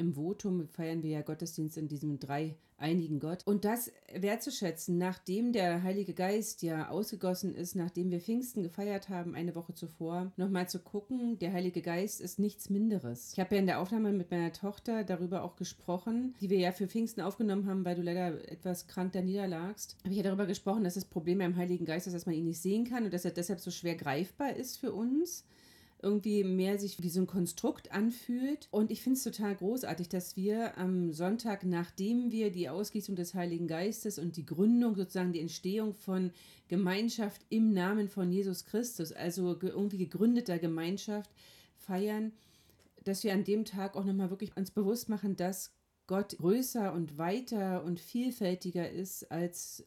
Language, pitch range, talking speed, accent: German, 175-210 Hz, 190 wpm, German